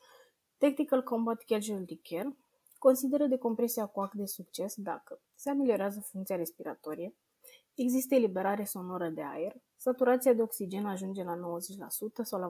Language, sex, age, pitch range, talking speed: Romanian, female, 20-39, 200-255 Hz, 130 wpm